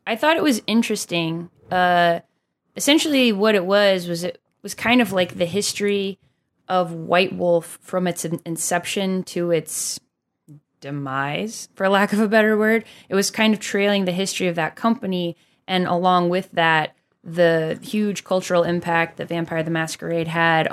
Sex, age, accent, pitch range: female, 10-29, American, 160-190 Hz